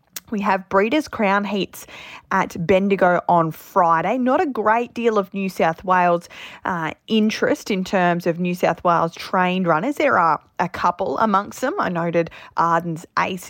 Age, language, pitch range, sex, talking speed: 20-39, English, 170-200 Hz, female, 165 wpm